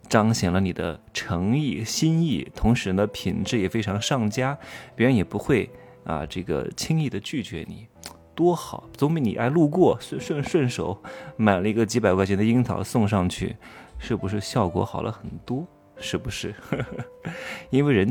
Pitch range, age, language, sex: 100-135 Hz, 20-39, Chinese, male